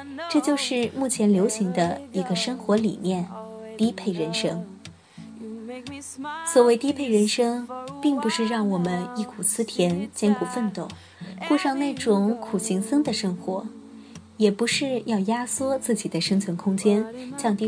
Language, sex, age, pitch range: Chinese, female, 20-39, 190-245 Hz